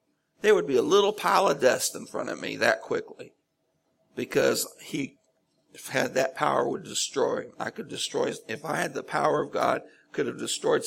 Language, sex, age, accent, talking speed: English, male, 60-79, American, 195 wpm